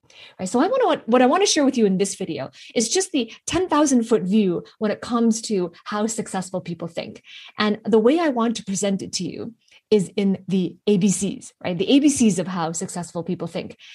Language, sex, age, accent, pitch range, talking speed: English, female, 20-39, American, 190-250 Hz, 220 wpm